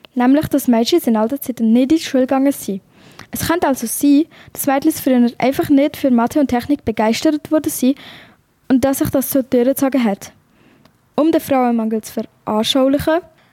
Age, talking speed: 20-39, 175 wpm